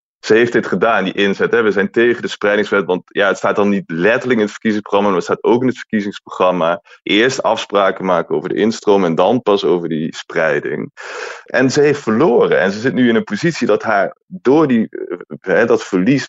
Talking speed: 205 wpm